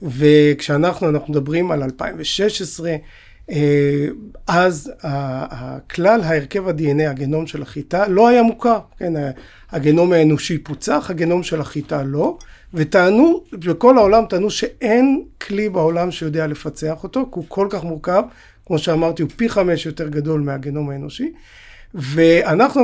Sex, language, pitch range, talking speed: male, Hebrew, 150-185 Hz, 125 wpm